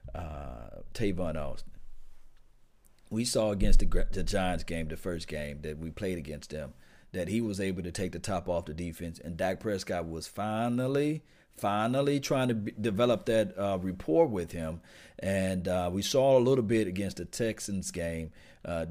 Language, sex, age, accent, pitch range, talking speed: English, male, 40-59, American, 90-120 Hz, 180 wpm